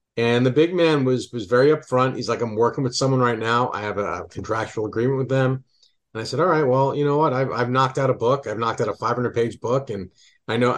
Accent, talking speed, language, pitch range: American, 260 wpm, English, 105-135 Hz